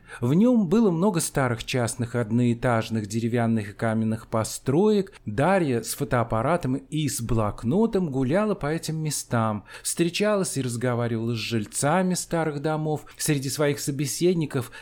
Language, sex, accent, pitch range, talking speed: Russian, male, native, 120-165 Hz, 125 wpm